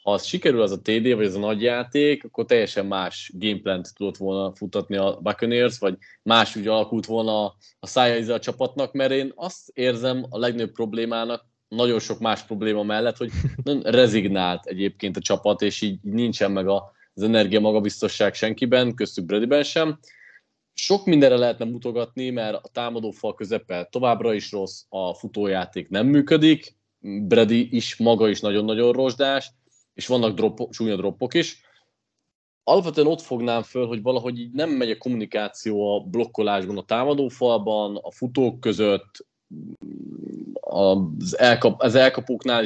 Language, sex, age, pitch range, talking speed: Hungarian, male, 20-39, 105-125 Hz, 150 wpm